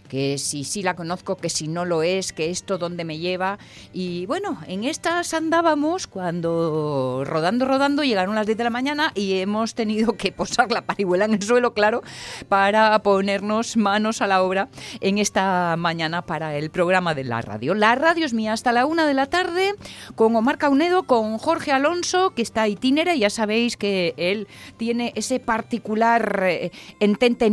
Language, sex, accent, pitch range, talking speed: Spanish, female, Spanish, 175-255 Hz, 185 wpm